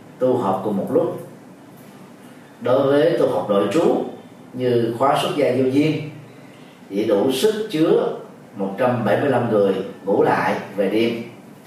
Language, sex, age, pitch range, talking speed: Vietnamese, male, 30-49, 115-145 Hz, 140 wpm